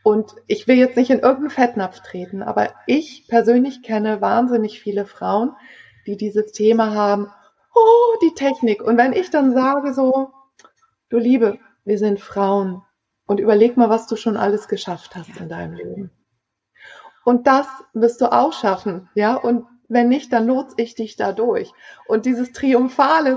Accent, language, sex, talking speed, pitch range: German, German, female, 165 wpm, 210-265 Hz